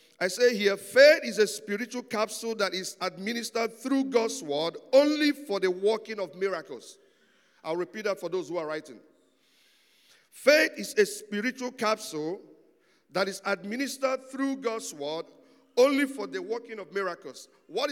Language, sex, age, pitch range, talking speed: English, male, 50-69, 185-245 Hz, 155 wpm